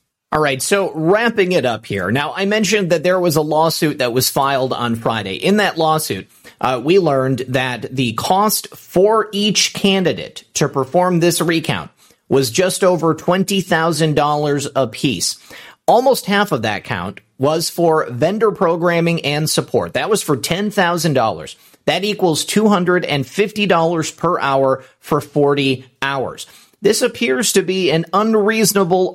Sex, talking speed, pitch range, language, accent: male, 145 wpm, 140-190 Hz, English, American